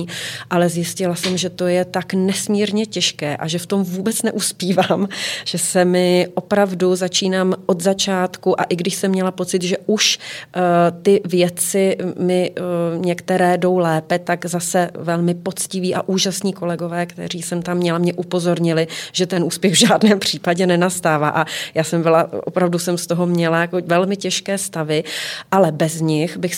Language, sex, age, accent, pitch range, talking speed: Czech, female, 30-49, native, 170-185 Hz, 170 wpm